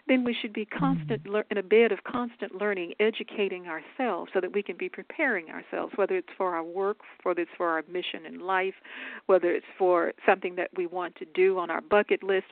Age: 50-69